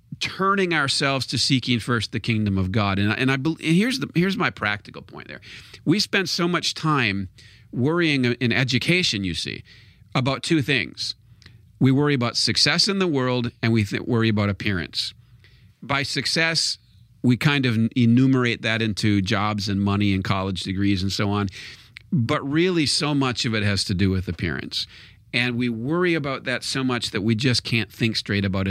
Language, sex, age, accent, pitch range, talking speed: English, male, 40-59, American, 105-130 Hz, 185 wpm